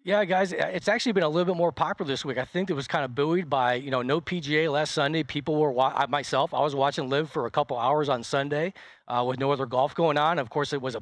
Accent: American